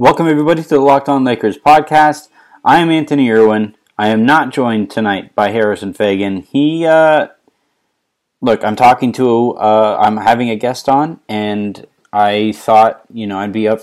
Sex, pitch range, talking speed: male, 105-130 Hz, 175 wpm